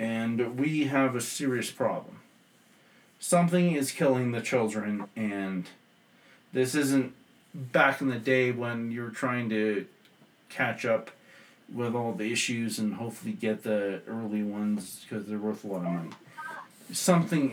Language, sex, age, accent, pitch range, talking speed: English, male, 40-59, American, 110-160 Hz, 145 wpm